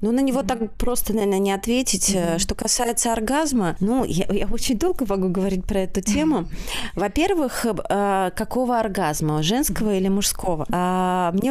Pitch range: 185-225 Hz